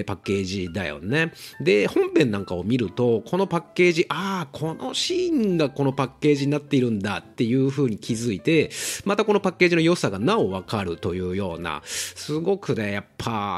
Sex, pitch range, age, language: male, 100-145 Hz, 40-59, Japanese